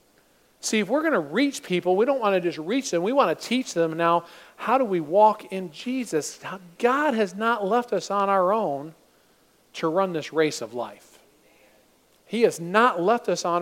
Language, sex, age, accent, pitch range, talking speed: English, male, 40-59, American, 170-225 Hz, 205 wpm